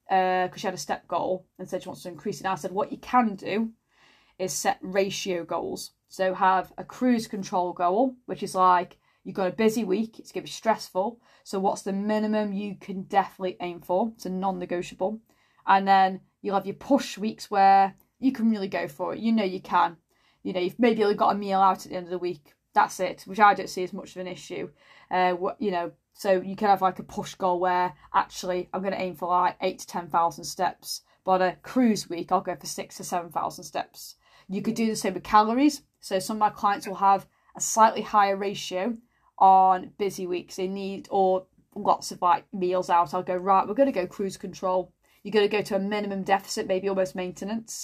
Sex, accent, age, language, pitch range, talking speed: female, British, 20-39, English, 185-205 Hz, 230 wpm